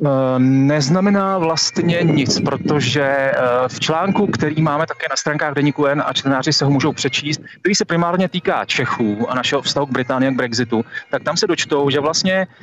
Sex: male